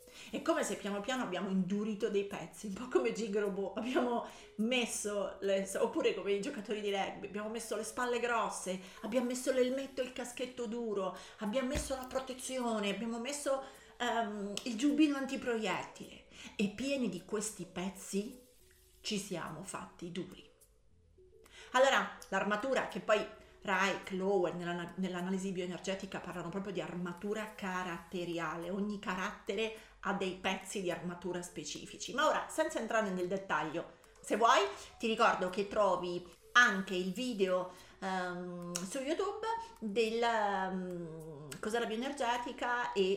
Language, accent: Italian, native